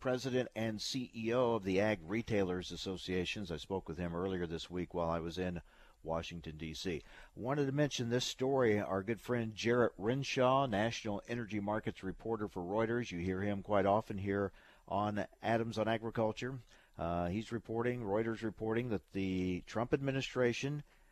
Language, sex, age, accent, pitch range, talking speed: English, male, 50-69, American, 100-125 Hz, 160 wpm